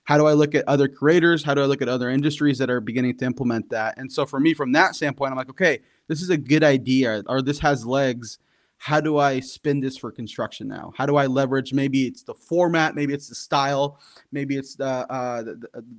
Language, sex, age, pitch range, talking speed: English, male, 20-39, 125-145 Hz, 235 wpm